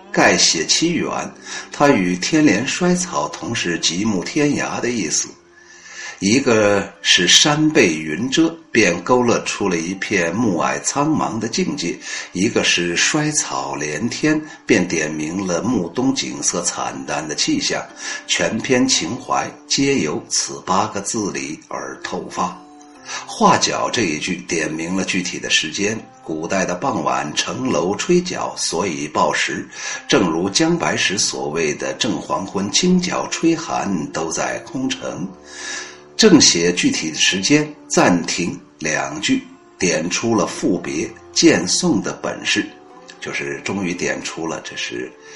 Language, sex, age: Chinese, male, 60-79